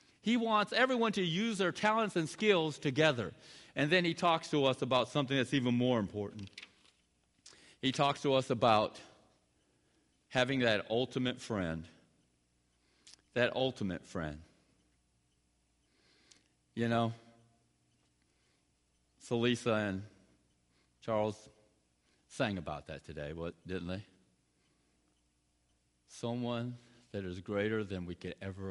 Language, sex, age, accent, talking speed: English, male, 50-69, American, 110 wpm